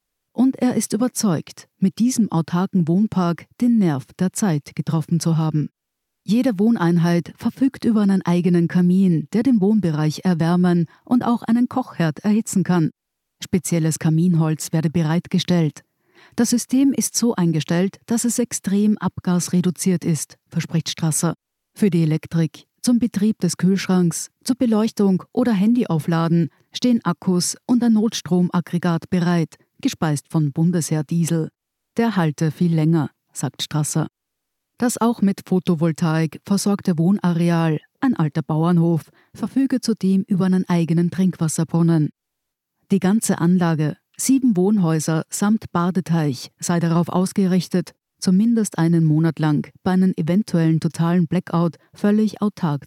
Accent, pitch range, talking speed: German, 165-205 Hz, 125 wpm